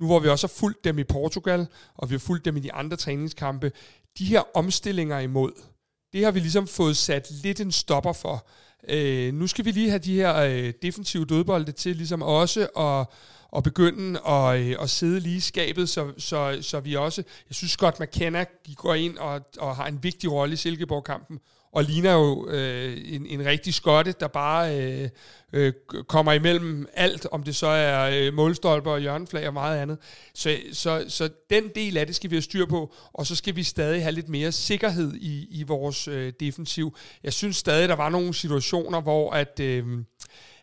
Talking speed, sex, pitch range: 205 wpm, male, 140-170 Hz